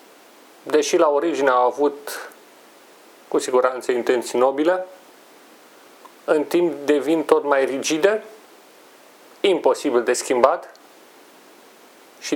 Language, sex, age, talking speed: Romanian, male, 40-59, 90 wpm